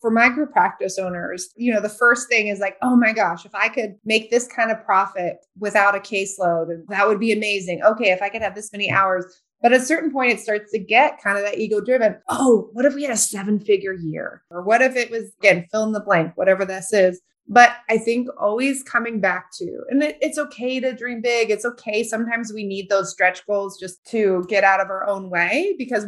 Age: 20-39